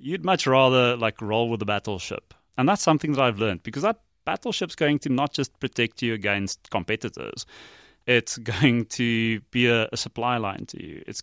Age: 30-49